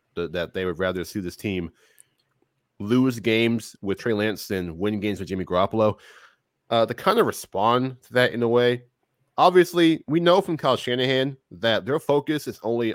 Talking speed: 180 wpm